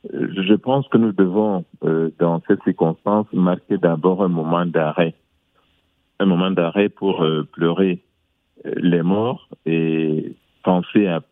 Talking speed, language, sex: 125 wpm, French, male